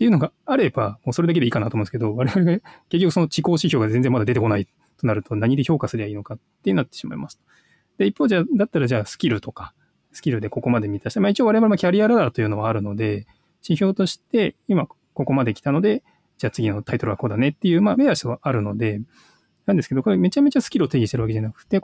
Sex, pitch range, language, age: male, 120-190 Hz, Japanese, 20-39